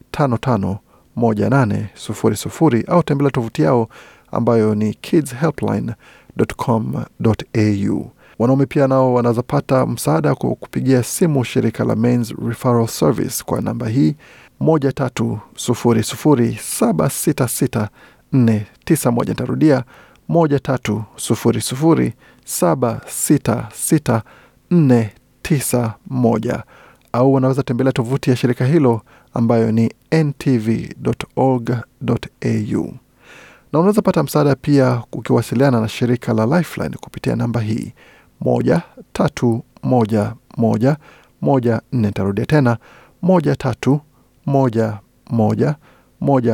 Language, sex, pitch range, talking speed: Swahili, male, 115-135 Hz, 105 wpm